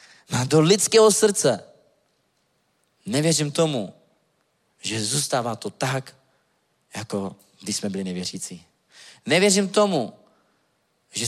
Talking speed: 95 wpm